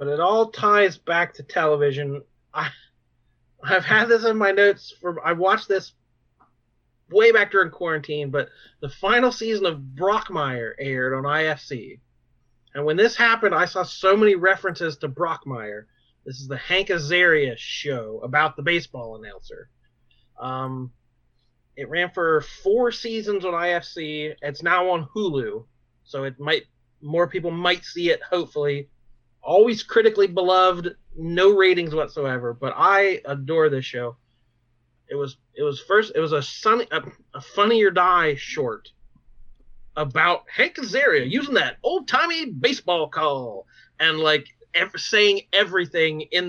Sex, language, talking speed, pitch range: male, English, 150 wpm, 135-190 Hz